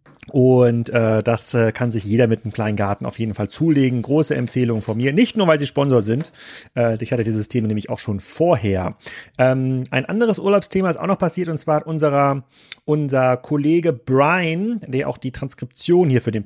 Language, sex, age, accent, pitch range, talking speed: German, male, 40-59, German, 120-150 Hz, 195 wpm